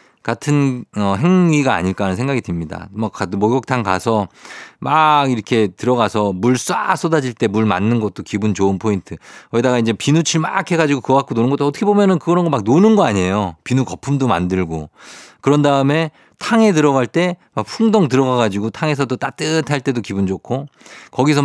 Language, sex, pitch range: Korean, male, 100-140 Hz